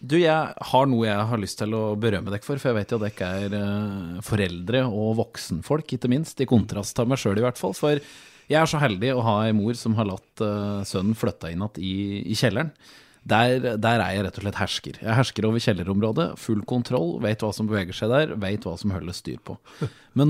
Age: 20-39